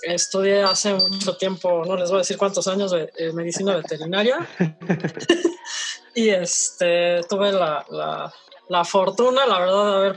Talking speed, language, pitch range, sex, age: 150 wpm, Spanish, 180-215 Hz, female, 20-39